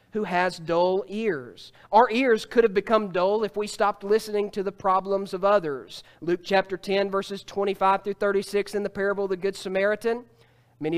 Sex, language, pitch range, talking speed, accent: male, English, 180-220 Hz, 185 wpm, American